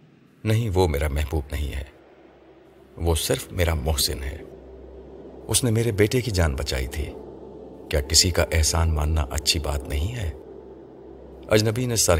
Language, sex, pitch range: Urdu, male, 75-90 Hz